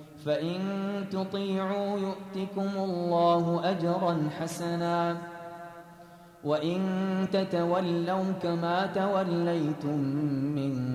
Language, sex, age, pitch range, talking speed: Arabic, male, 30-49, 160-195 Hz, 60 wpm